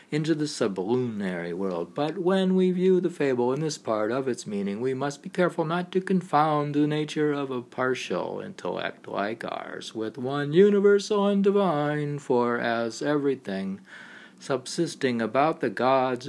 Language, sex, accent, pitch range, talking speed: English, male, American, 125-165 Hz, 160 wpm